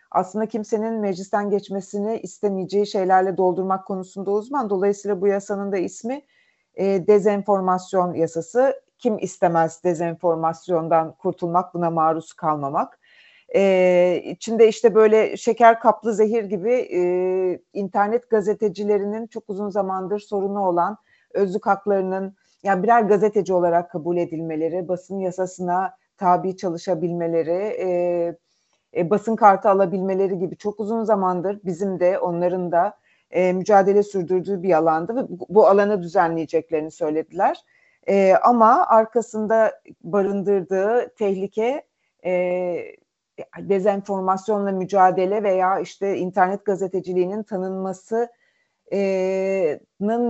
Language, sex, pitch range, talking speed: Turkish, female, 180-215 Hz, 105 wpm